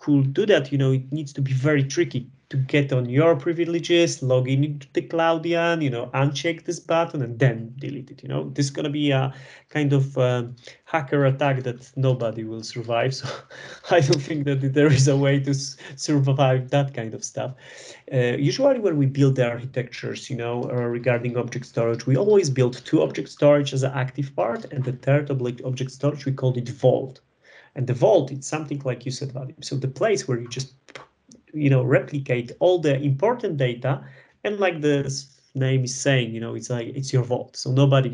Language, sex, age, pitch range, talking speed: Polish, male, 30-49, 125-145 Hz, 205 wpm